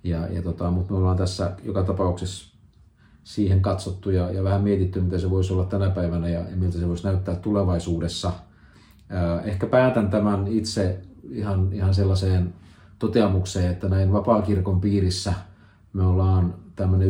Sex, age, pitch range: male, 40-59, 90-100 Hz